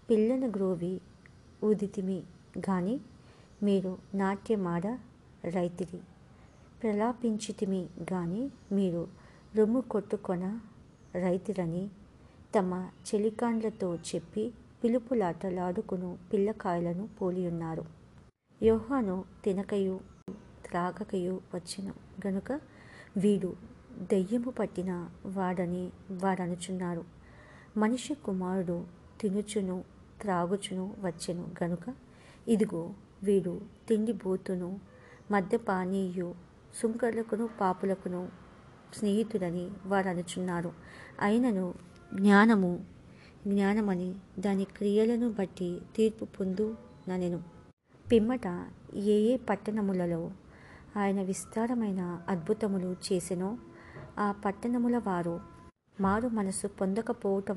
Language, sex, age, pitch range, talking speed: English, male, 50-69, 180-215 Hz, 65 wpm